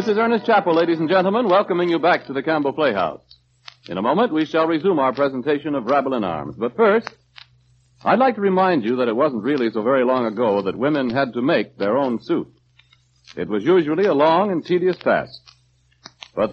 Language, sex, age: English, male, 60-79